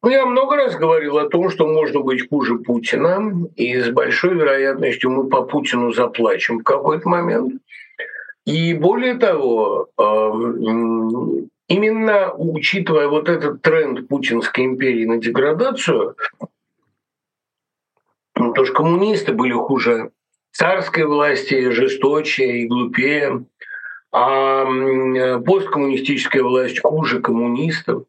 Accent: native